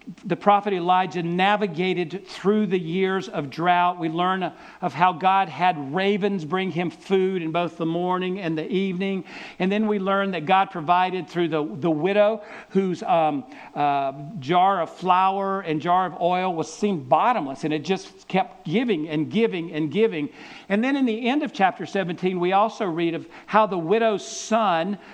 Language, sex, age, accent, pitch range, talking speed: English, male, 50-69, American, 170-205 Hz, 180 wpm